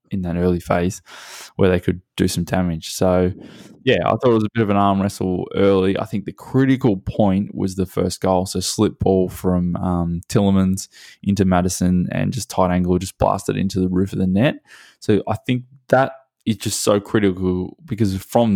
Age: 20-39